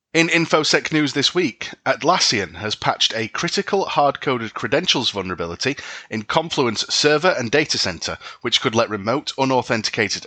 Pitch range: 110-140 Hz